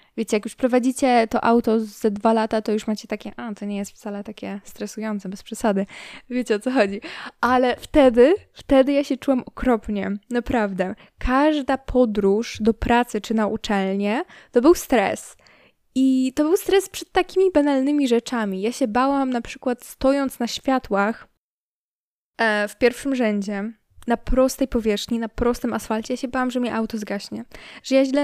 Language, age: Polish, 10-29